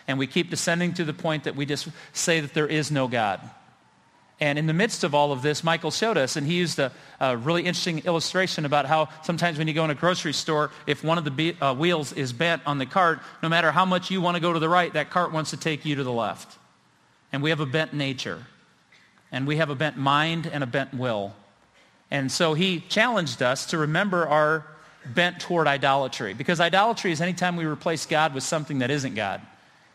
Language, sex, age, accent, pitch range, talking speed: English, male, 40-59, American, 135-170 Hz, 230 wpm